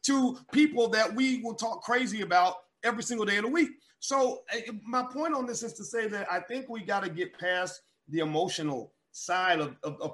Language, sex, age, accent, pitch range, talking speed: English, male, 30-49, American, 165-225 Hz, 220 wpm